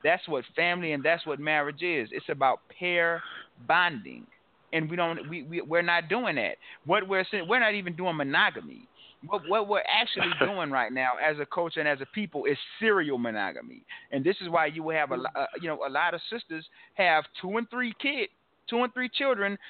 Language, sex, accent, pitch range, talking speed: English, male, American, 160-230 Hz, 210 wpm